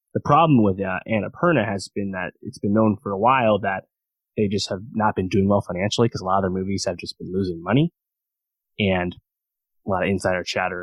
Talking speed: 220 wpm